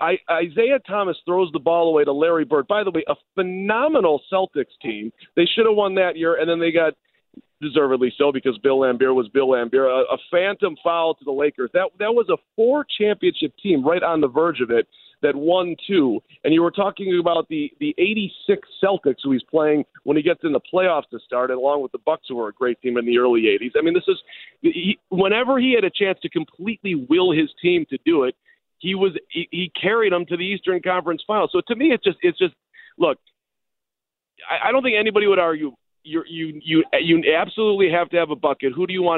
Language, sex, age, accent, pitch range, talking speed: English, male, 40-59, American, 160-265 Hz, 230 wpm